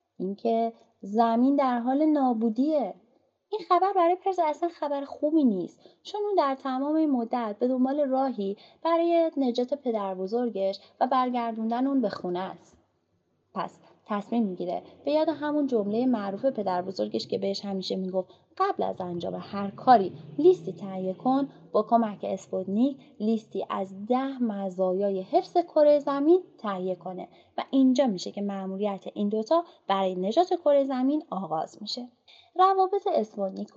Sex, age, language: female, 20-39, Persian